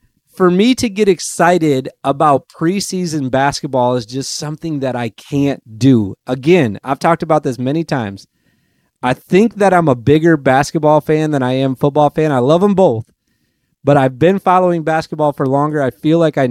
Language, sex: English, male